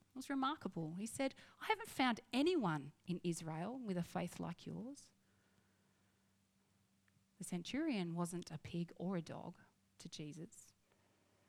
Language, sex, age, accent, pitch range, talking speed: English, female, 40-59, Australian, 135-210 Hz, 135 wpm